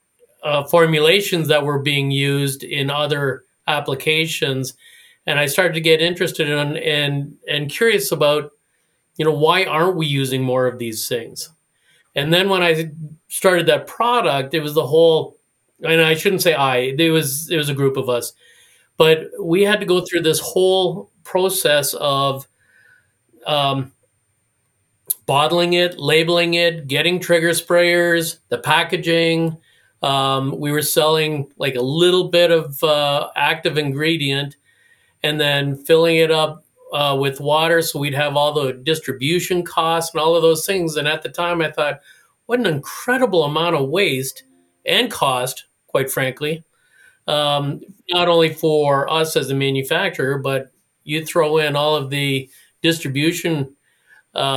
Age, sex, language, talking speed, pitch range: 40-59, male, English, 155 wpm, 140-170 Hz